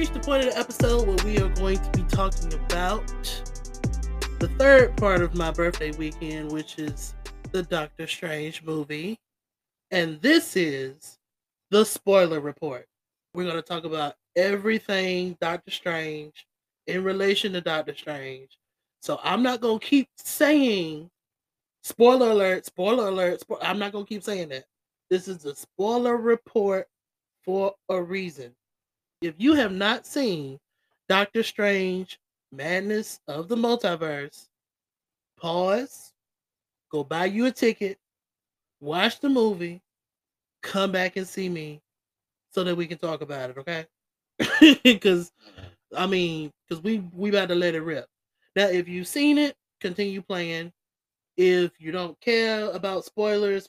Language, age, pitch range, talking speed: English, 20-39, 155-205 Hz, 140 wpm